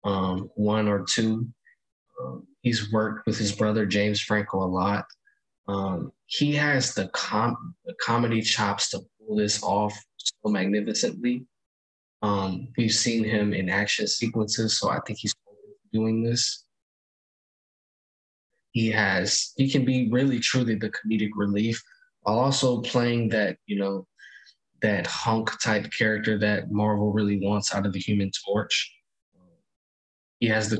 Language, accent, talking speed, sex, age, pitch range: English, American, 140 wpm, male, 20-39, 100-115 Hz